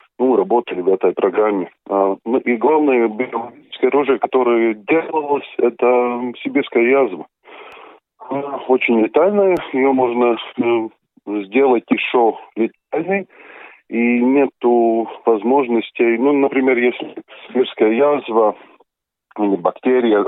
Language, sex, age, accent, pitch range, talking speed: Russian, male, 20-39, native, 110-140 Hz, 100 wpm